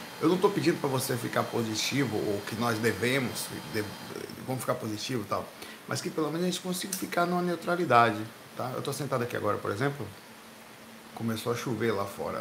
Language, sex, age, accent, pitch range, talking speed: Portuguese, male, 60-79, Brazilian, 110-150 Hz, 200 wpm